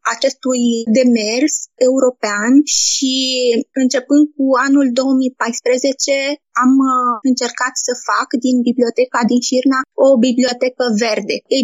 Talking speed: 105 wpm